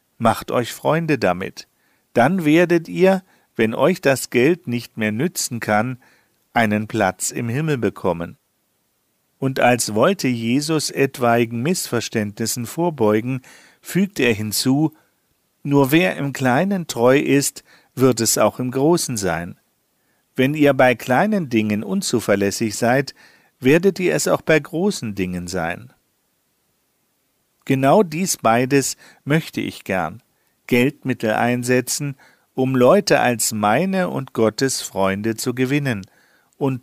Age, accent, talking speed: 50-69, German, 120 wpm